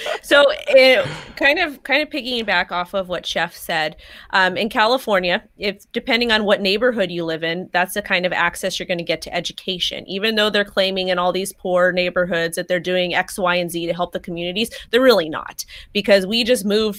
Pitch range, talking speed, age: 175-205 Hz, 220 wpm, 30-49